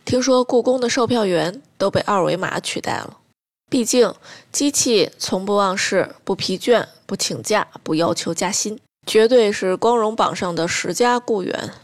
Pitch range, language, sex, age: 175-240 Hz, Chinese, female, 20-39